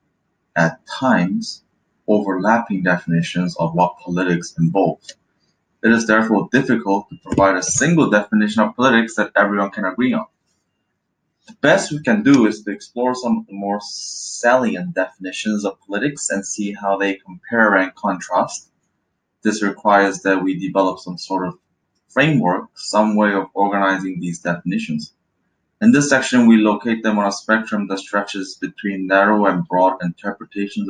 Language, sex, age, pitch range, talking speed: English, male, 20-39, 95-115 Hz, 150 wpm